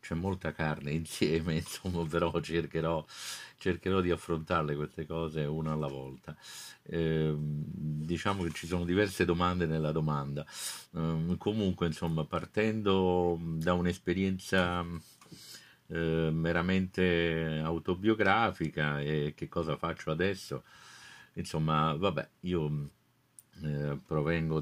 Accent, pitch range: native, 75-90 Hz